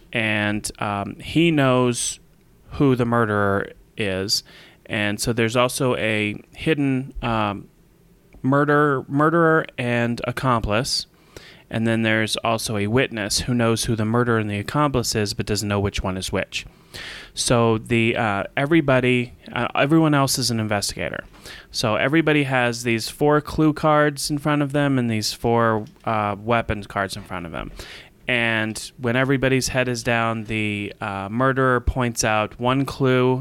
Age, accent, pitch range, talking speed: 30-49, American, 105-130 Hz, 155 wpm